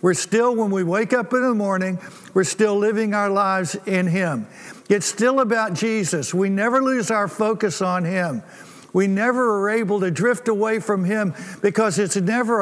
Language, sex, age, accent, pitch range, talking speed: English, male, 60-79, American, 185-220 Hz, 185 wpm